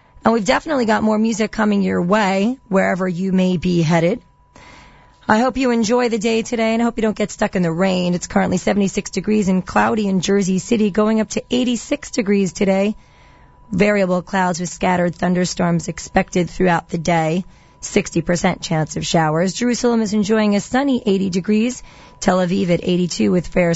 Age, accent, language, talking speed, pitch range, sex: 30-49, American, English, 180 wpm, 175-215 Hz, female